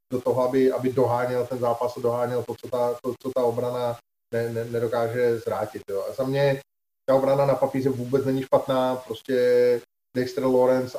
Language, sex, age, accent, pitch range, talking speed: Czech, male, 30-49, native, 120-130 Hz, 185 wpm